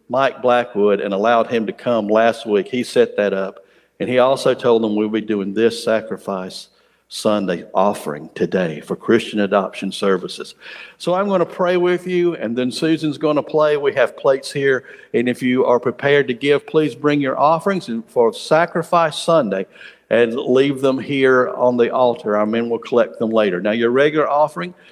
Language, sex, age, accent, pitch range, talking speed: English, male, 50-69, American, 110-150 Hz, 190 wpm